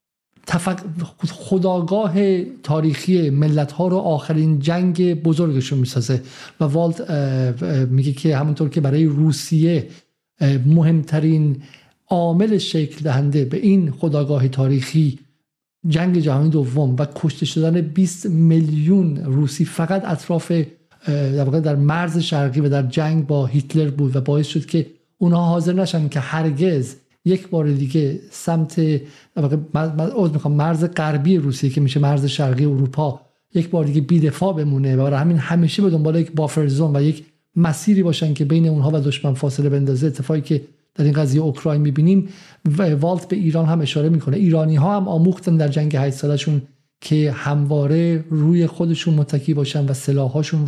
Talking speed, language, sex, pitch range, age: 145 wpm, Persian, male, 145-170 Hz, 50-69